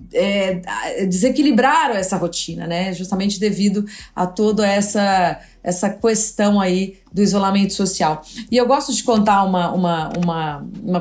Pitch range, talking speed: 195-235 Hz, 130 wpm